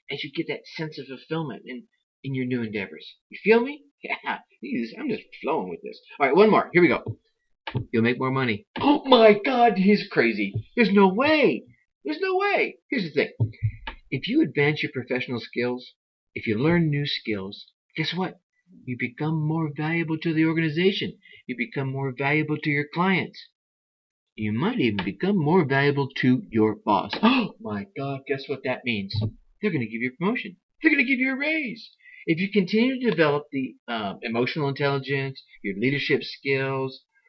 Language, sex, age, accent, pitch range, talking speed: English, male, 40-59, American, 130-210 Hz, 185 wpm